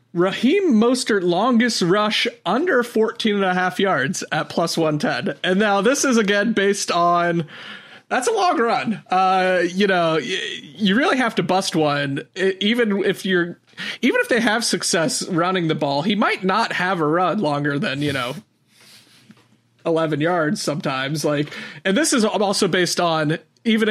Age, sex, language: 30-49, male, English